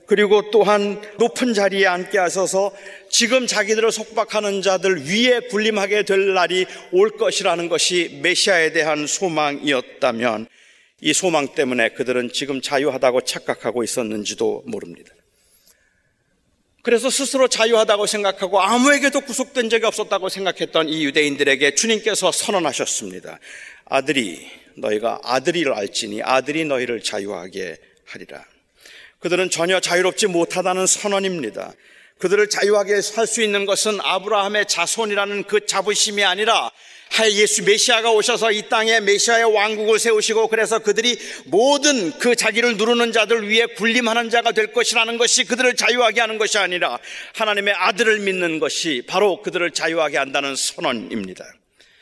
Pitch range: 170-225 Hz